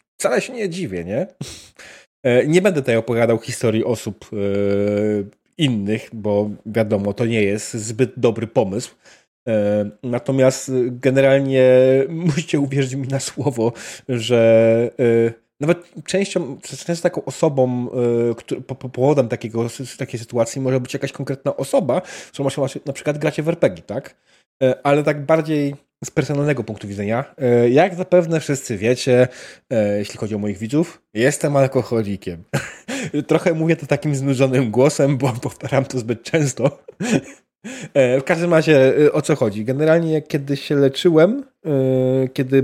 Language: Polish